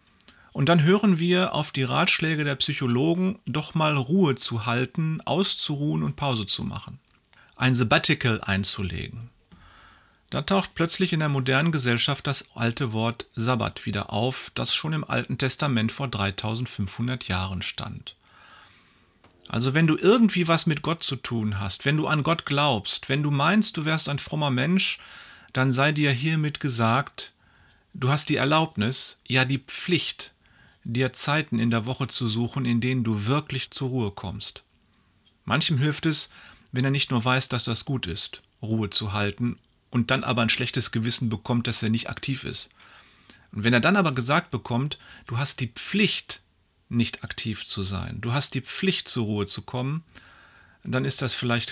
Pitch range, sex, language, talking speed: 115-150 Hz, male, German, 170 wpm